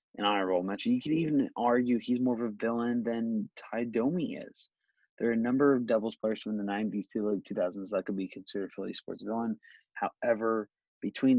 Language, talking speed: English, 195 wpm